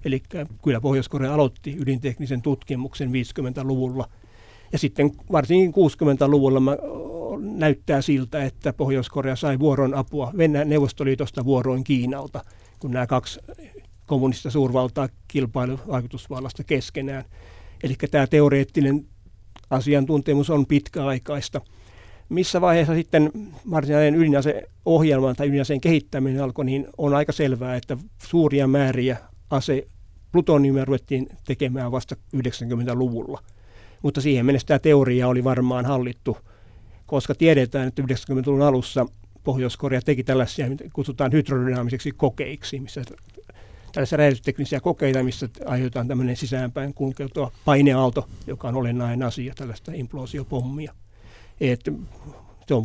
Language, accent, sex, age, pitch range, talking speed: Finnish, native, male, 60-79, 125-145 Hz, 110 wpm